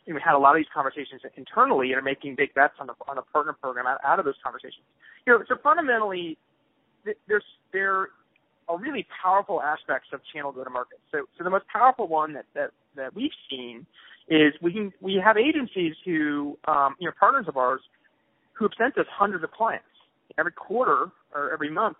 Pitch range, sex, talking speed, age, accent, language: 140-185 Hz, male, 200 wpm, 30-49, American, English